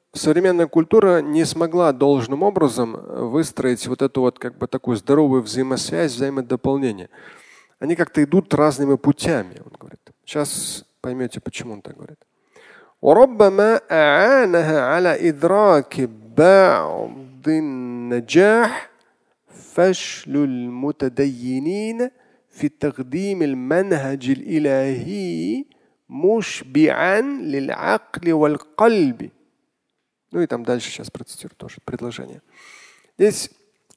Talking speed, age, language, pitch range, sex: 65 wpm, 40-59, Russian, 135-210 Hz, male